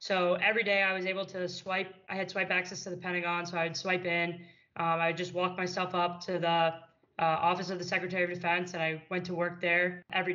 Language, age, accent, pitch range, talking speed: English, 20-39, American, 170-185 Hz, 245 wpm